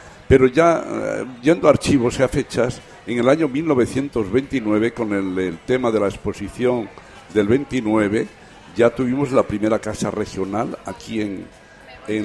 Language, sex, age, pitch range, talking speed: Spanish, male, 60-79, 105-130 Hz, 145 wpm